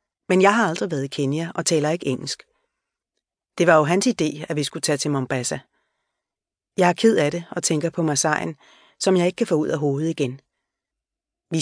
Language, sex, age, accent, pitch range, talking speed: Danish, female, 30-49, native, 145-190 Hz, 210 wpm